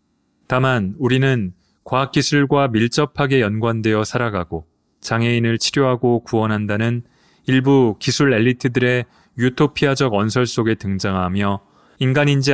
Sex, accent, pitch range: male, native, 110-130 Hz